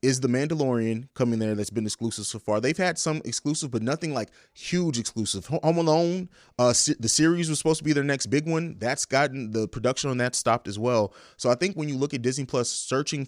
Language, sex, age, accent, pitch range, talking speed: English, male, 30-49, American, 110-140 Hz, 230 wpm